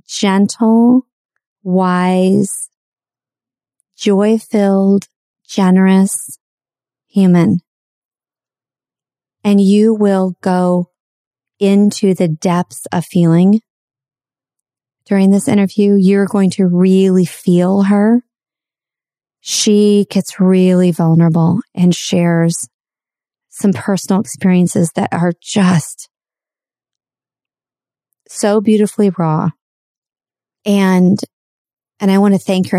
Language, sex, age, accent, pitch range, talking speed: English, female, 30-49, American, 175-205 Hz, 80 wpm